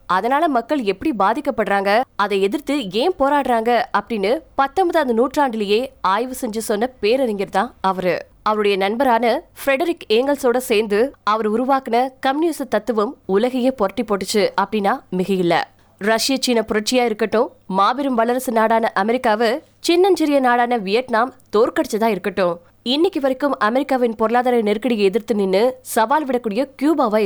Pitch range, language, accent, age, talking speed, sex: 210-270 Hz, Tamil, native, 20-39, 70 wpm, female